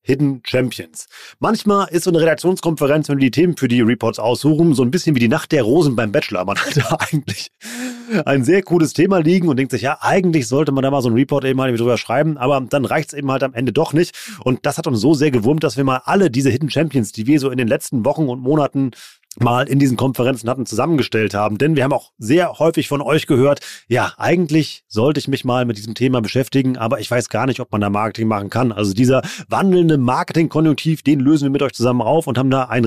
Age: 30-49